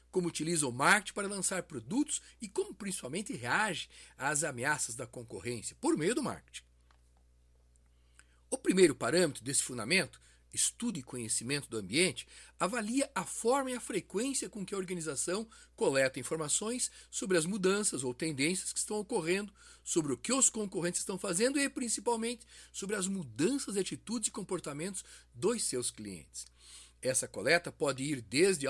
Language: Portuguese